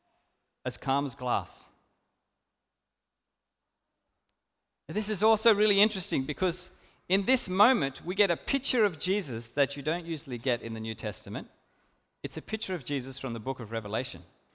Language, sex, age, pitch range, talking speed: English, male, 40-59, 155-210 Hz, 160 wpm